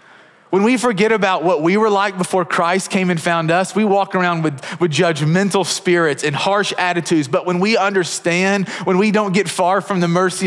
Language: English